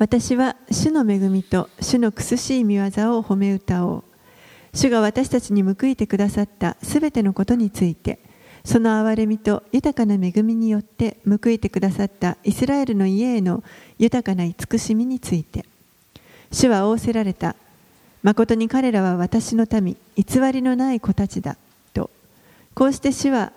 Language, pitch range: Japanese, 195-240 Hz